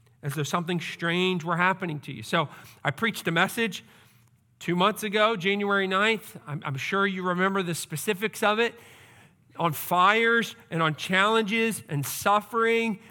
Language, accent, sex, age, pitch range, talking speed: English, American, male, 40-59, 155-210 Hz, 155 wpm